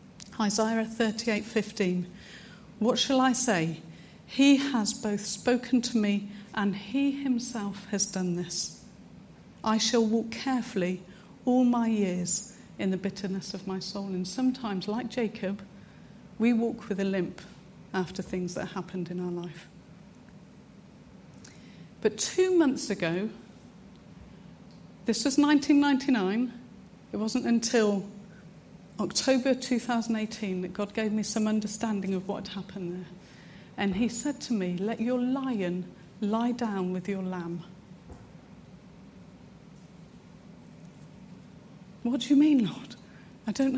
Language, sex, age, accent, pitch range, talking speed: English, female, 40-59, British, 190-235 Hz, 125 wpm